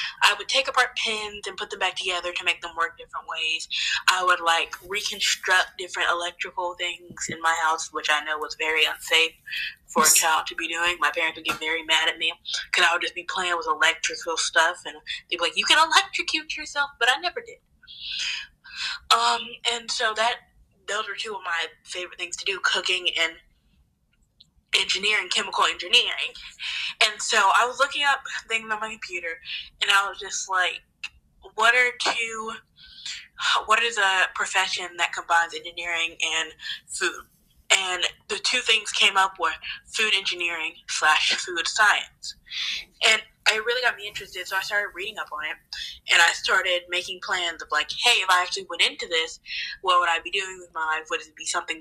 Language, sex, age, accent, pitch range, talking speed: English, female, 10-29, American, 165-235 Hz, 190 wpm